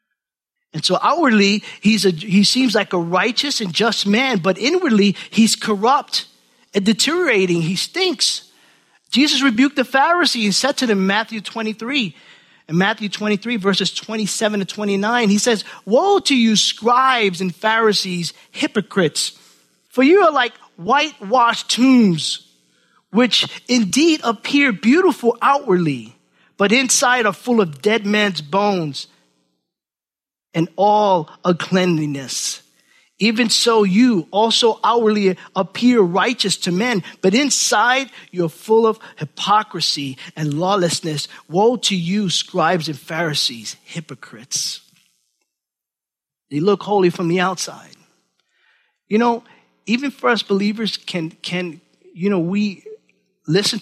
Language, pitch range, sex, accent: English, 175-230 Hz, male, American